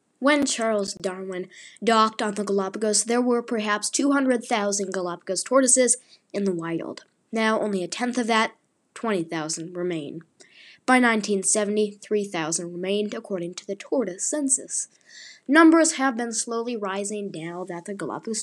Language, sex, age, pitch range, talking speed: English, female, 10-29, 190-245 Hz, 135 wpm